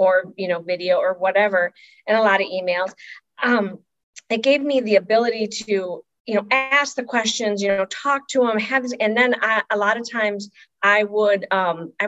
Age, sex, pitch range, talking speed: 40-59, female, 185-225 Hz, 205 wpm